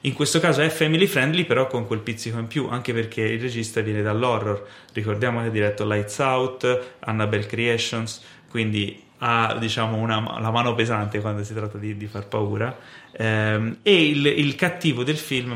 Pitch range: 105-130 Hz